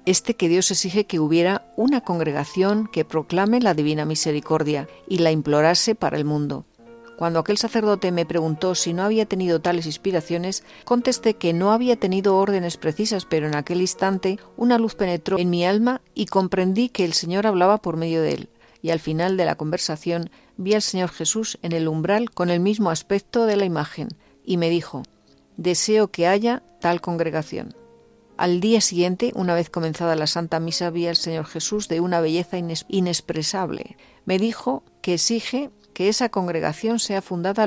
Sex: female